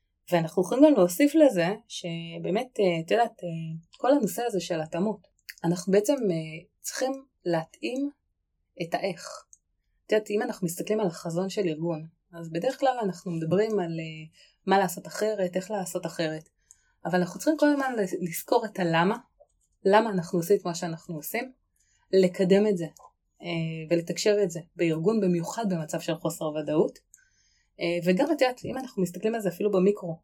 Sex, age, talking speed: female, 20-39, 155 wpm